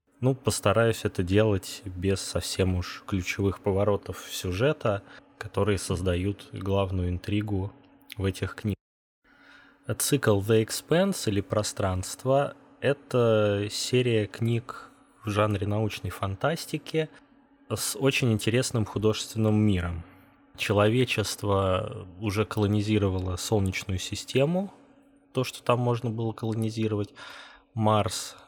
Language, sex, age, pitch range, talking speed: Russian, male, 20-39, 95-115 Hz, 95 wpm